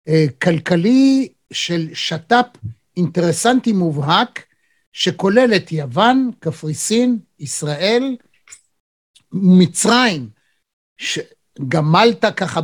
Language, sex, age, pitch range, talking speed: Hebrew, male, 60-79, 165-235 Hz, 65 wpm